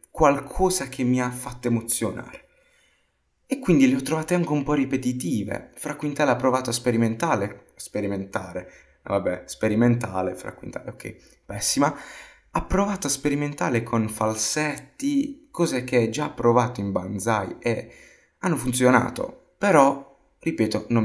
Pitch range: 110-150 Hz